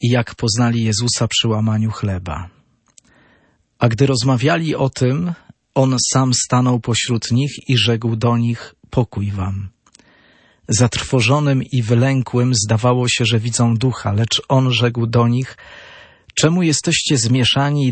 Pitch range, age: 115-135 Hz, 40-59